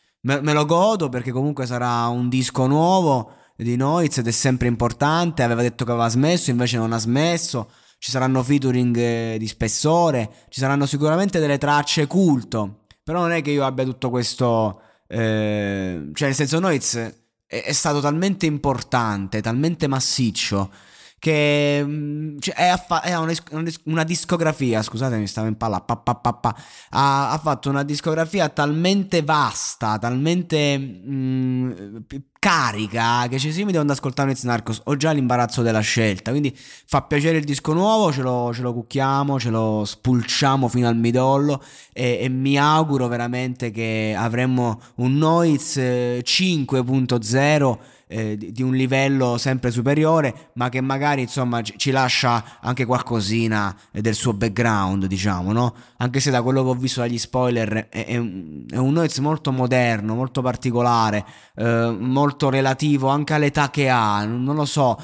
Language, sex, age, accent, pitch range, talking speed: Italian, male, 20-39, native, 120-145 Hz, 160 wpm